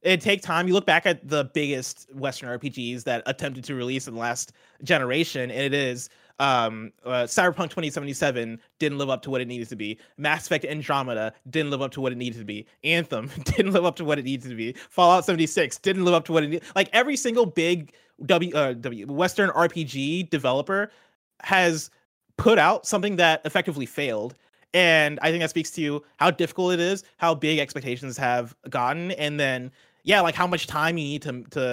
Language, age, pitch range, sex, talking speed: English, 30-49, 130-170 Hz, male, 210 wpm